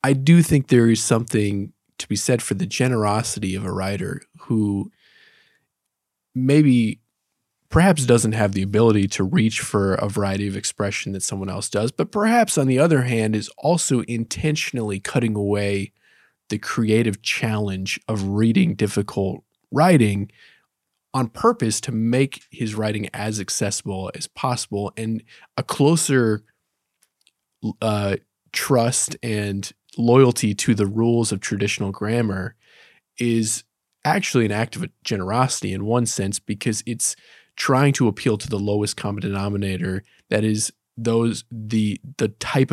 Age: 20-39